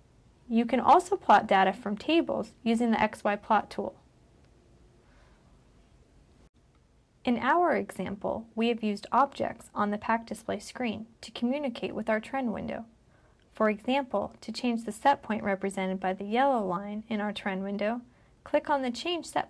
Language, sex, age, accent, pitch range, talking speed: English, female, 30-49, American, 200-245 Hz, 155 wpm